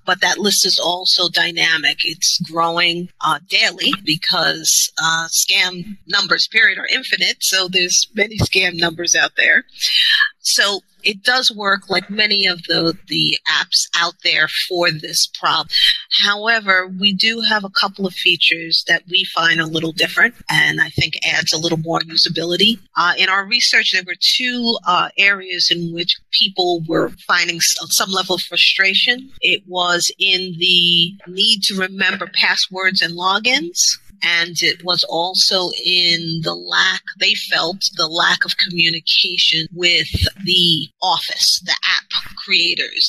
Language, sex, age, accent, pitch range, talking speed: English, female, 40-59, American, 170-200 Hz, 150 wpm